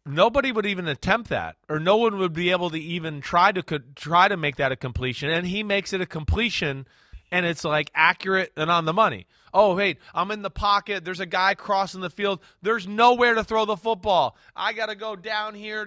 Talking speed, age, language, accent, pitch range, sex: 225 wpm, 30-49, English, American, 165-205 Hz, male